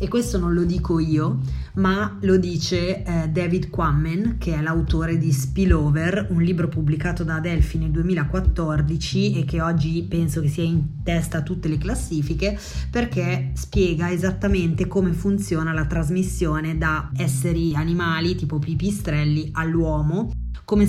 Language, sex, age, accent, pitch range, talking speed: Italian, female, 20-39, native, 155-180 Hz, 145 wpm